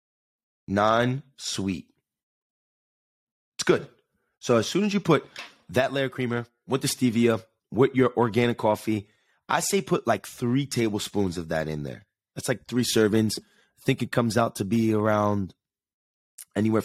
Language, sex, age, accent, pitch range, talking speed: English, male, 30-49, American, 105-130 Hz, 155 wpm